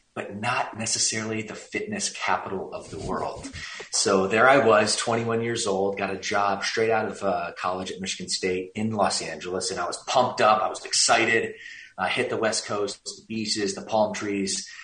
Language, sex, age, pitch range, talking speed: English, male, 30-49, 95-110 Hz, 190 wpm